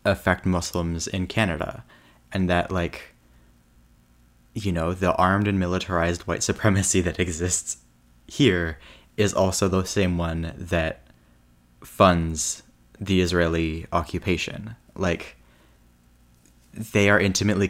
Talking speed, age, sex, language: 110 wpm, 20-39, male, English